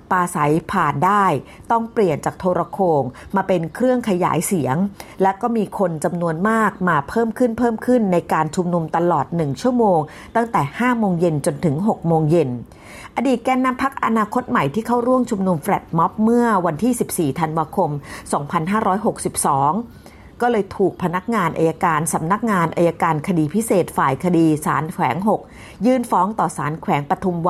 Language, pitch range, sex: Thai, 160-215 Hz, female